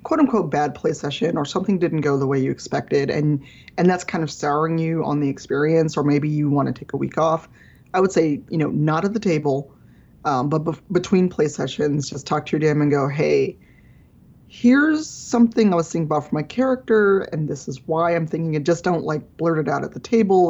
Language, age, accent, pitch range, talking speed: English, 20-39, American, 150-180 Hz, 230 wpm